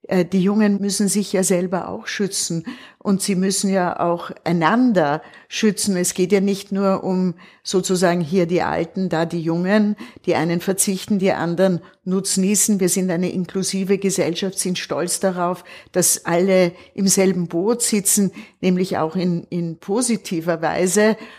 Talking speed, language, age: 150 wpm, German, 50-69